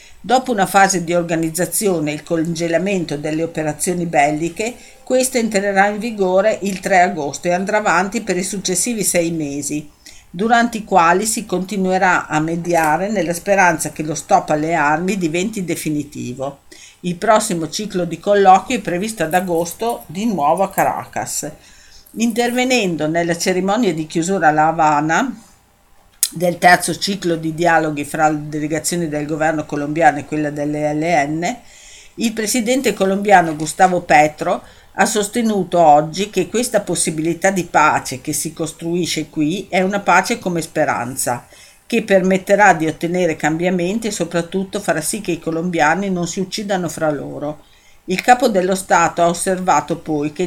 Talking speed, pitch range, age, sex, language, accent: 145 wpm, 160-195 Hz, 50-69, female, Italian, native